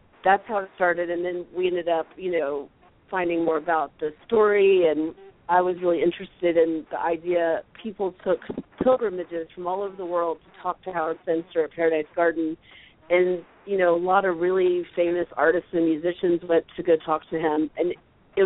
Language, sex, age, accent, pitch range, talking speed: English, female, 40-59, American, 165-185 Hz, 190 wpm